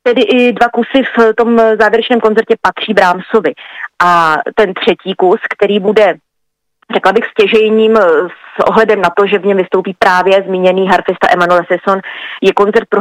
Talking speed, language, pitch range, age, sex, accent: 160 wpm, Czech, 185-215 Hz, 30-49, female, native